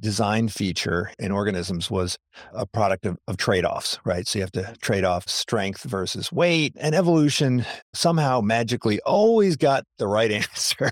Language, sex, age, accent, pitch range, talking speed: English, male, 50-69, American, 95-125 Hz, 160 wpm